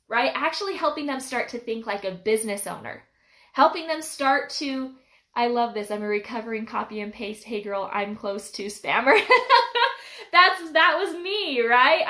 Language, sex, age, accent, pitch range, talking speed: English, female, 10-29, American, 215-295 Hz, 175 wpm